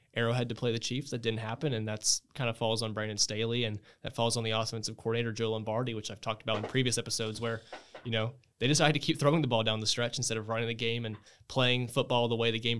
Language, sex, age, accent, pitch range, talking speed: English, male, 20-39, American, 110-130 Hz, 265 wpm